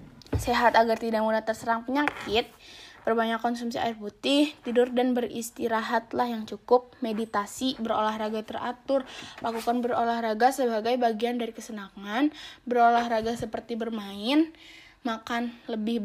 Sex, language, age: female, Indonesian, 20-39